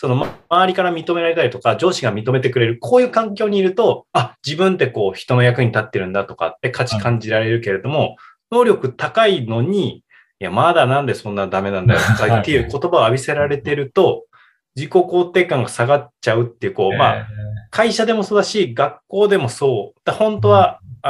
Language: Japanese